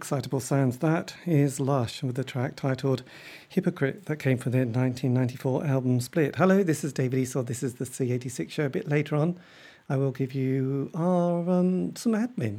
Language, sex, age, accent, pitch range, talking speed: English, male, 40-59, British, 130-165 Hz, 185 wpm